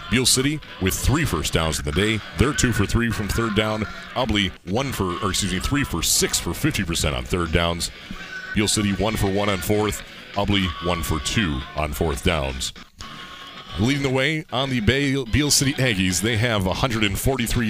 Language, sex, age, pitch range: English, male, 40-59, 90-115 Hz